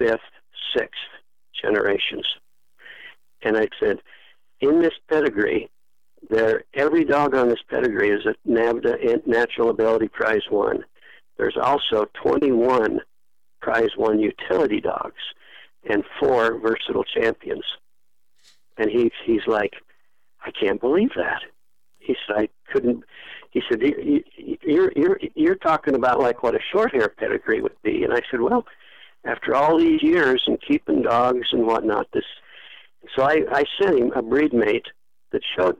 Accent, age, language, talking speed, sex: American, 60-79, English, 140 wpm, male